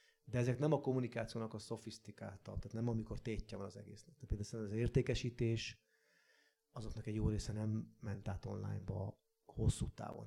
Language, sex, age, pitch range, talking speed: Hungarian, male, 30-49, 105-125 Hz, 165 wpm